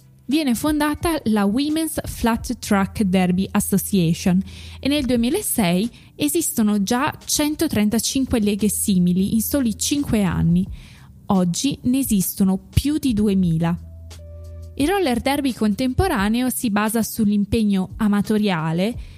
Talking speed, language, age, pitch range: 105 wpm, Italian, 20-39, 185-240 Hz